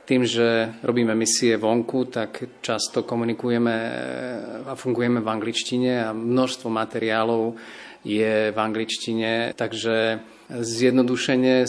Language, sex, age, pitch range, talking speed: Slovak, male, 40-59, 115-130 Hz, 105 wpm